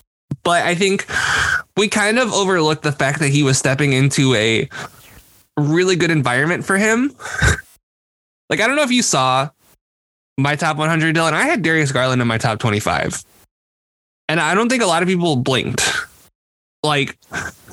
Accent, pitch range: American, 120-165 Hz